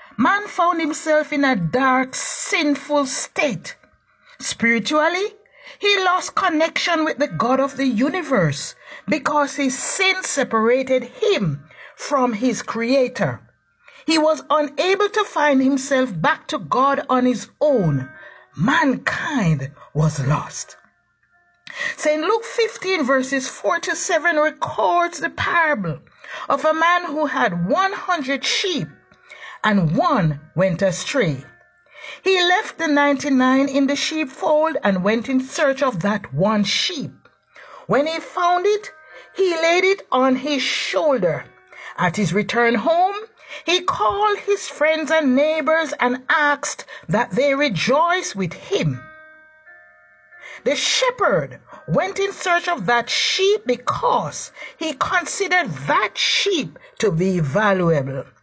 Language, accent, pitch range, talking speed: English, Nigerian, 235-345 Hz, 125 wpm